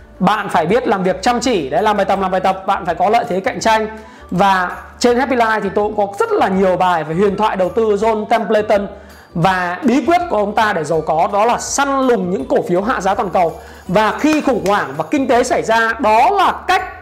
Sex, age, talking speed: male, 20-39, 255 wpm